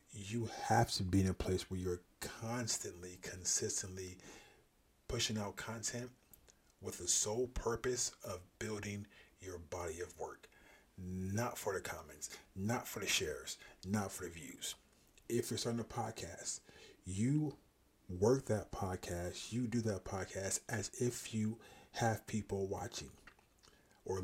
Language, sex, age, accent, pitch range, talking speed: English, male, 40-59, American, 95-115 Hz, 140 wpm